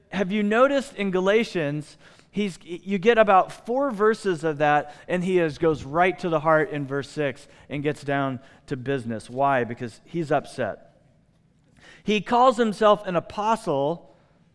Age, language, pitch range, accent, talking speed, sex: 40-59, English, 150-205 Hz, American, 150 wpm, male